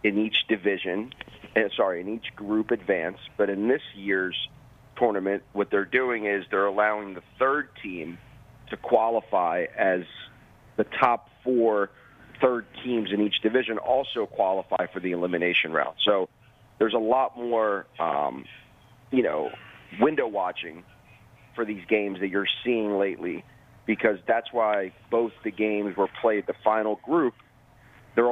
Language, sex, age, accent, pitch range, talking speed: English, male, 40-59, American, 100-120 Hz, 145 wpm